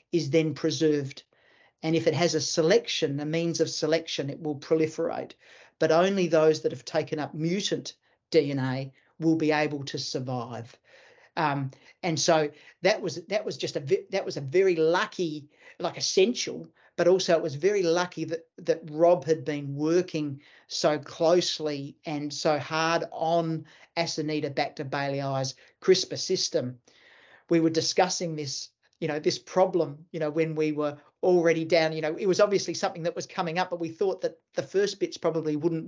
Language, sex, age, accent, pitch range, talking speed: English, male, 50-69, Australian, 150-175 Hz, 170 wpm